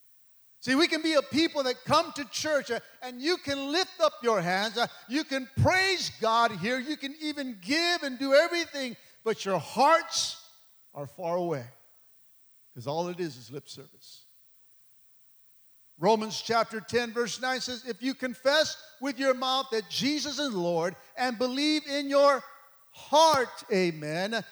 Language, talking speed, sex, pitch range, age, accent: English, 160 wpm, male, 205-290 Hz, 50-69, American